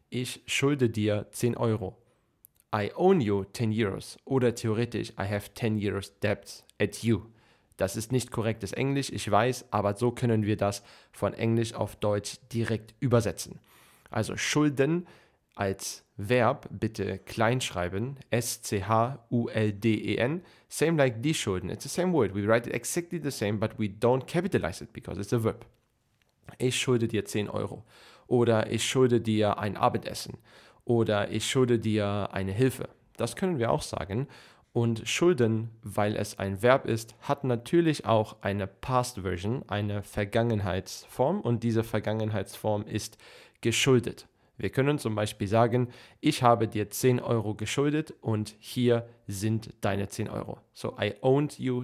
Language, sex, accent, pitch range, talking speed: German, male, German, 105-125 Hz, 150 wpm